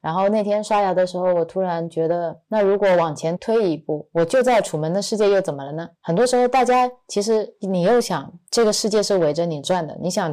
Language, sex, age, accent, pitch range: Chinese, female, 20-39, native, 165-205 Hz